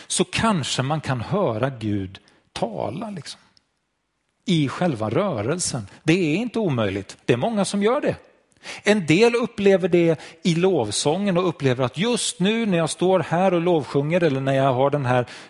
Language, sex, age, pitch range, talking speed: Swedish, male, 40-59, 135-185 Hz, 170 wpm